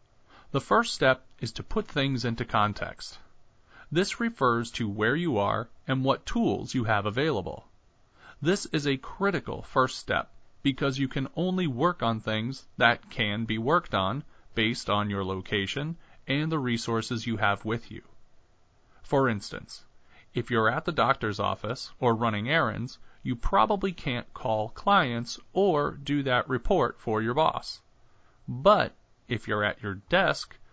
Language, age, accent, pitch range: English, 40-59, American, 110-145 Hz